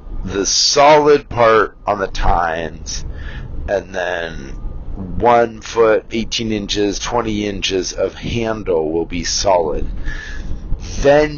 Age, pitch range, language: 40-59, 85-120 Hz, English